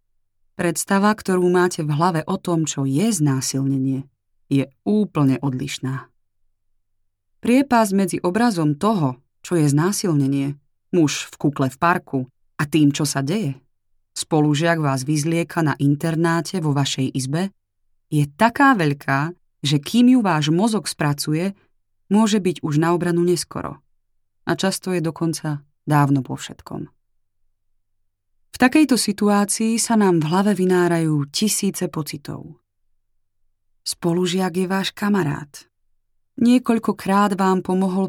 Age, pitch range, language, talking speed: 20-39, 125-180 Hz, Slovak, 120 wpm